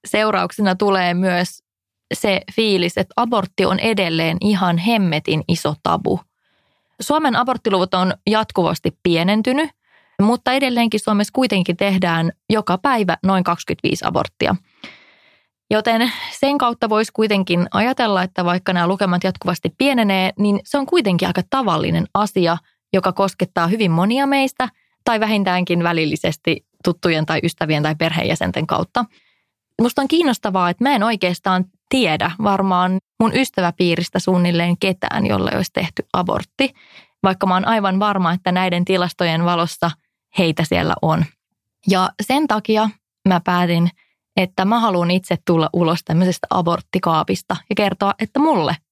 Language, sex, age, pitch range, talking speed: English, female, 20-39, 175-220 Hz, 130 wpm